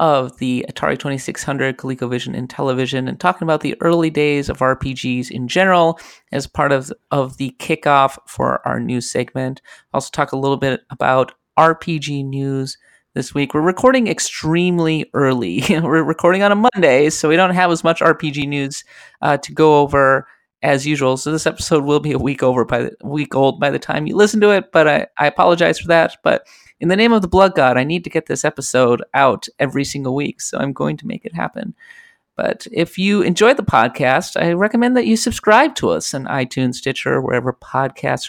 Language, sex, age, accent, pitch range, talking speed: English, male, 30-49, American, 135-180 Hz, 205 wpm